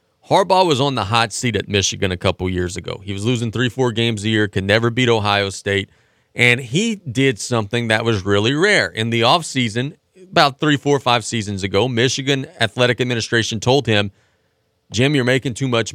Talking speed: 195 wpm